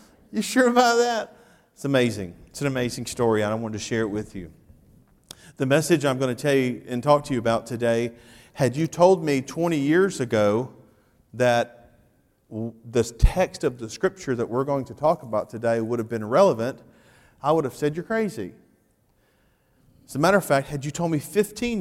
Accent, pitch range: American, 120-150 Hz